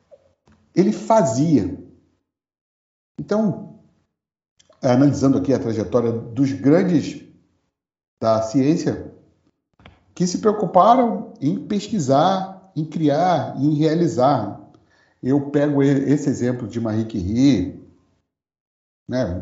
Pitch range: 130-185 Hz